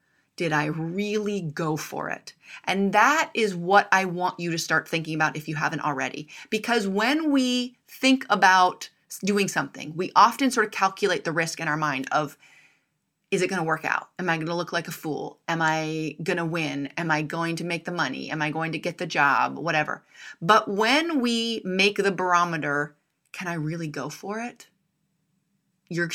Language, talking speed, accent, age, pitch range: English, 195 wpm, American, 30-49, 155-195 Hz